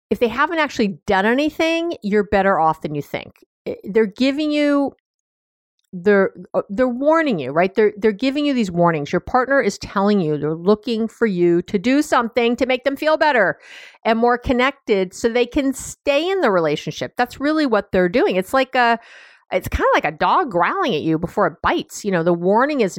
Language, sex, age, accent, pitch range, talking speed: English, female, 50-69, American, 170-255 Hz, 205 wpm